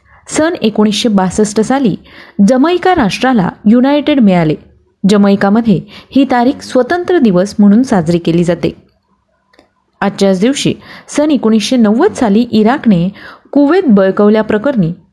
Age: 30-49